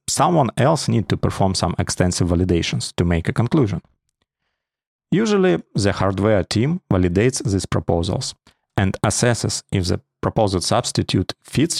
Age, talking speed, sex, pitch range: 30-49, 130 wpm, male, 95-135 Hz